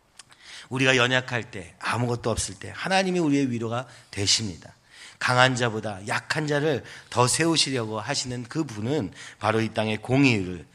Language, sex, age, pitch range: Korean, male, 40-59, 105-140 Hz